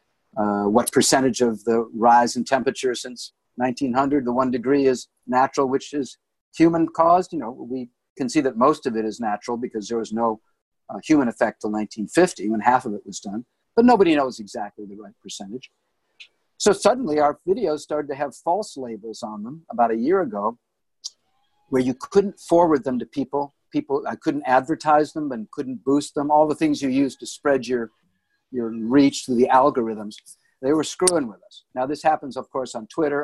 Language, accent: English, American